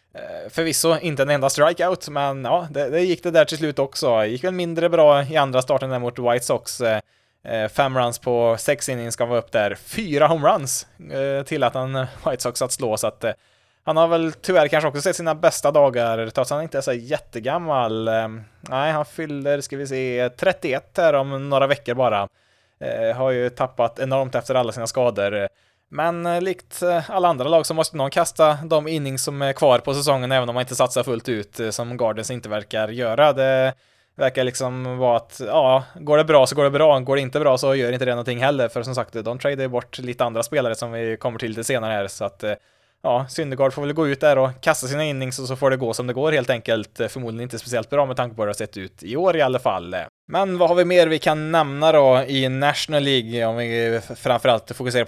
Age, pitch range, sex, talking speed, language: 20-39, 120-155 Hz, male, 225 wpm, Swedish